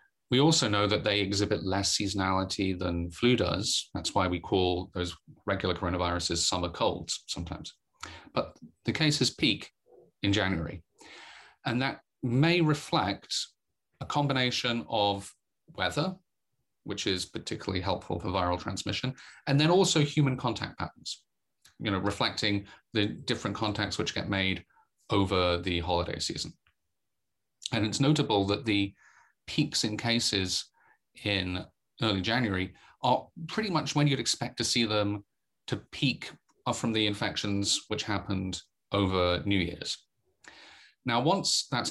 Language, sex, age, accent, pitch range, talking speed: English, male, 30-49, British, 95-120 Hz, 135 wpm